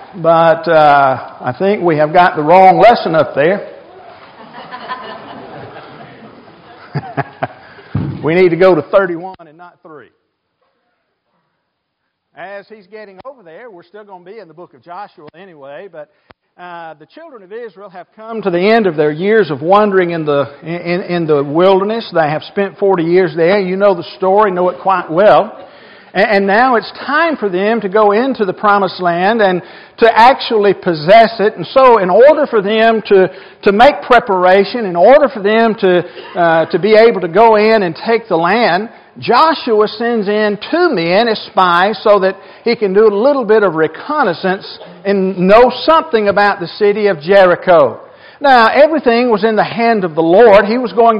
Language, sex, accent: English, male, American